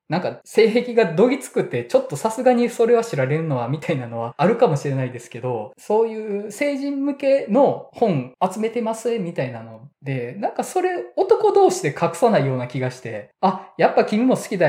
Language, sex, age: Japanese, male, 20-39